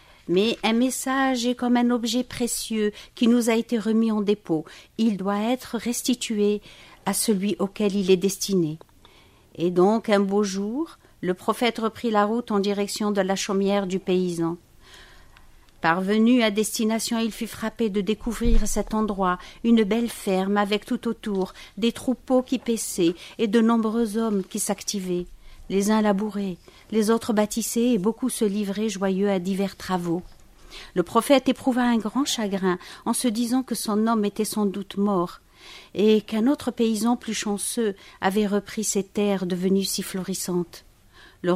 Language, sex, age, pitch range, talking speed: French, female, 50-69, 195-230 Hz, 160 wpm